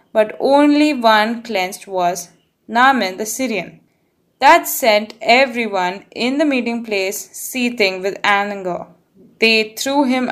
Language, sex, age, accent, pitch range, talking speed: English, female, 20-39, Indian, 205-285 Hz, 120 wpm